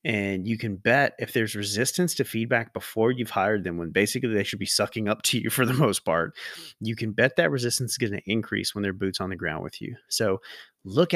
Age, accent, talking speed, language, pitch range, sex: 30-49, American, 240 wpm, English, 100-120 Hz, male